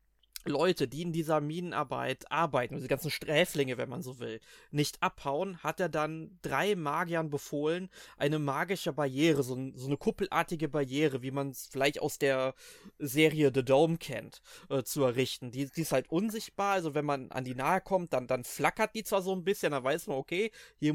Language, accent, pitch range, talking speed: German, German, 140-180 Hz, 190 wpm